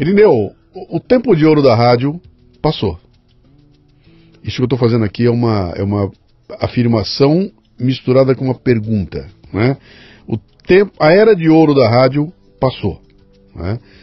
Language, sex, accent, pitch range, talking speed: Portuguese, male, Brazilian, 110-145 Hz, 135 wpm